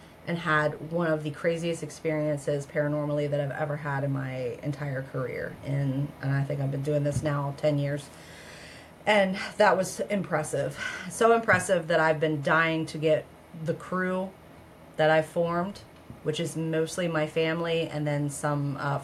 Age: 30-49